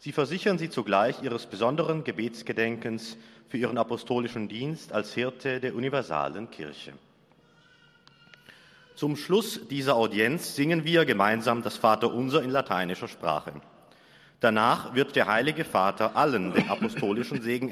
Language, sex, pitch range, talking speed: German, male, 105-140 Hz, 125 wpm